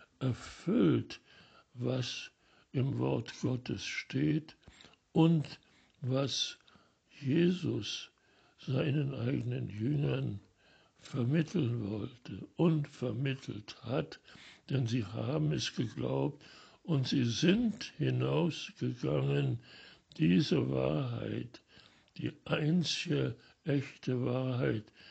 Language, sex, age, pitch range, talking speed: German, male, 60-79, 120-155 Hz, 75 wpm